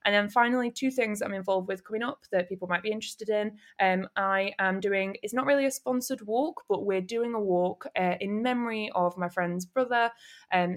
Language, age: English, 10-29